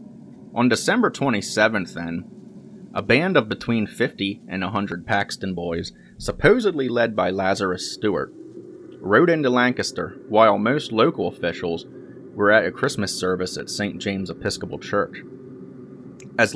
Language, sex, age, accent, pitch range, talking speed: English, male, 30-49, American, 95-130 Hz, 130 wpm